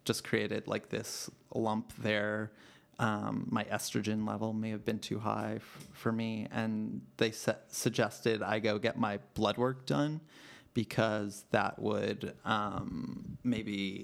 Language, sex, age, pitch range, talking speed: English, male, 30-49, 105-120 Hz, 135 wpm